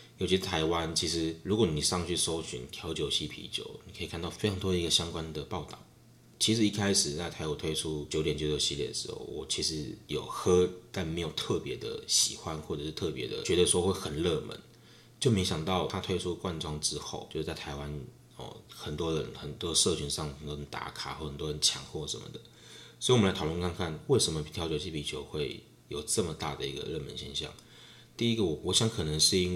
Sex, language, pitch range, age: male, Chinese, 75-95 Hz, 20-39